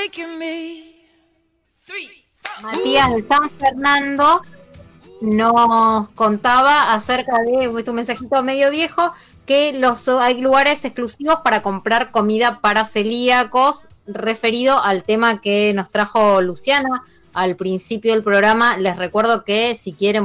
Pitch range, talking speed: 200-260 Hz, 115 wpm